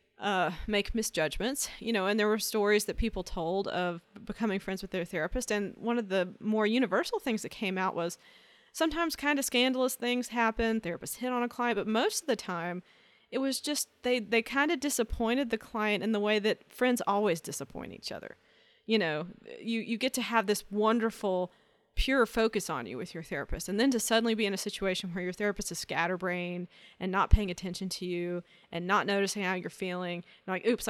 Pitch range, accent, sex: 180-230 Hz, American, female